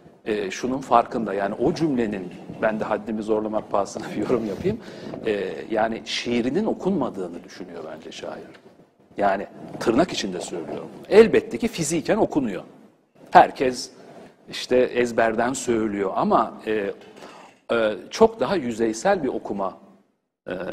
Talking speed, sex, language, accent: 120 wpm, male, Turkish, native